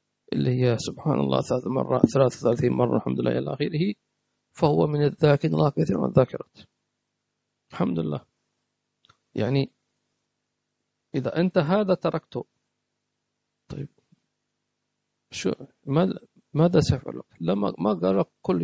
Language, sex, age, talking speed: English, male, 50-69, 115 wpm